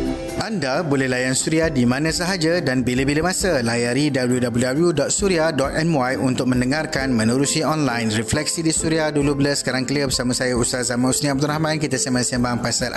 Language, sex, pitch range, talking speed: Malay, male, 125-165 Hz, 155 wpm